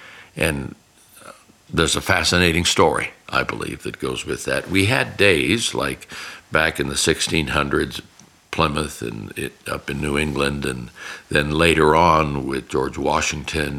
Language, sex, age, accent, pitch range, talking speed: English, male, 60-79, American, 75-95 Hz, 140 wpm